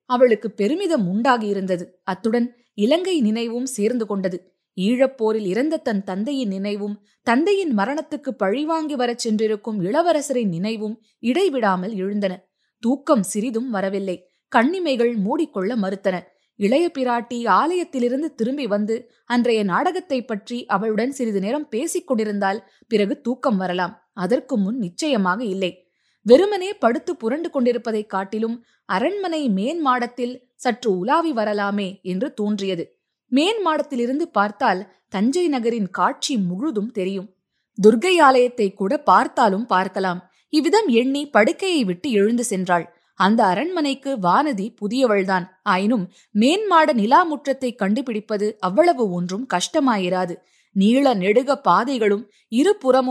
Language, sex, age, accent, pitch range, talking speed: Tamil, female, 20-39, native, 200-270 Hz, 105 wpm